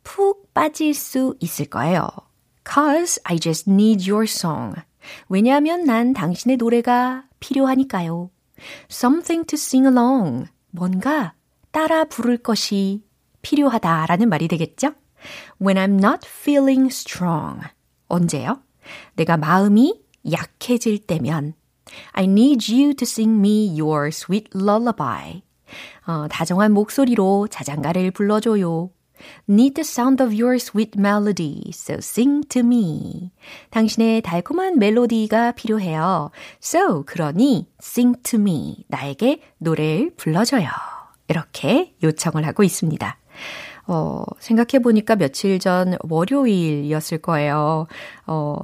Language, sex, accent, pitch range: Korean, female, native, 165-245 Hz